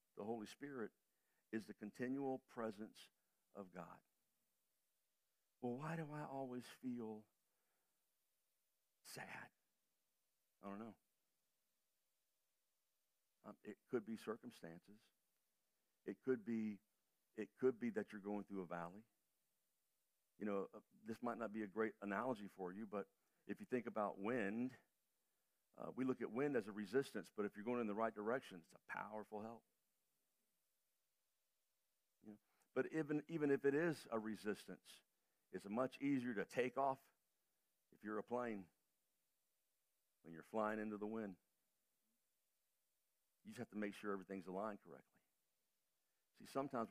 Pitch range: 105-120 Hz